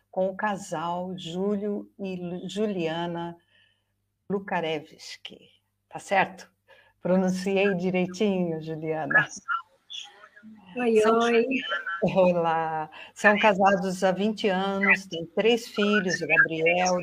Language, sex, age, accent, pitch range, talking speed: Portuguese, female, 50-69, Brazilian, 165-205 Hz, 90 wpm